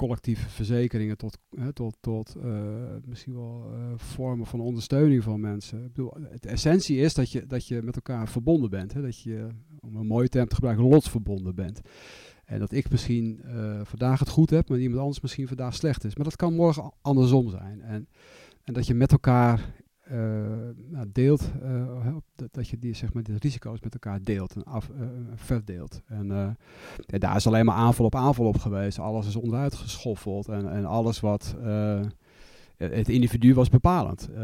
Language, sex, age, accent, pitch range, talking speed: Dutch, male, 40-59, Dutch, 105-125 Hz, 185 wpm